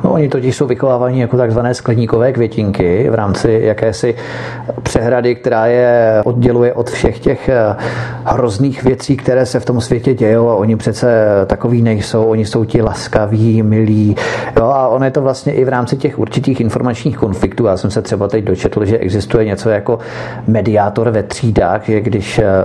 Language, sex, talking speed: Czech, male, 170 wpm